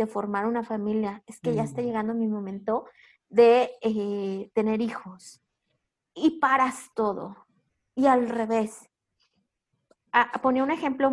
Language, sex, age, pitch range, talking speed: Spanish, female, 30-49, 225-270 Hz, 135 wpm